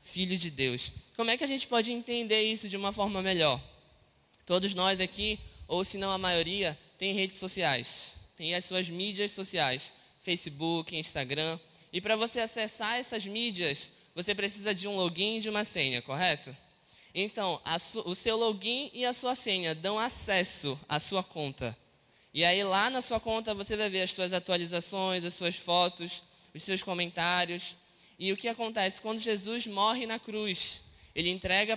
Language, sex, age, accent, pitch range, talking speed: Portuguese, male, 10-29, Brazilian, 160-210 Hz, 175 wpm